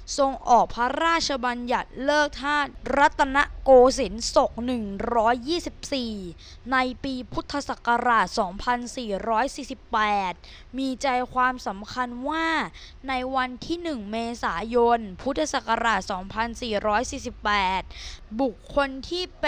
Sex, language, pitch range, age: female, Thai, 230-285 Hz, 20-39